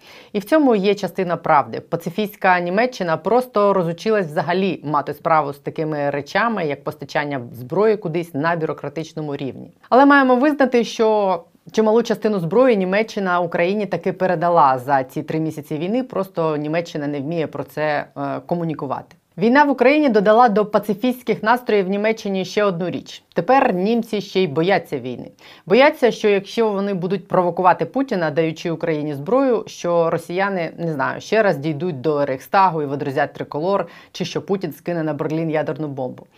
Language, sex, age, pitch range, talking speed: Ukrainian, female, 30-49, 160-210 Hz, 155 wpm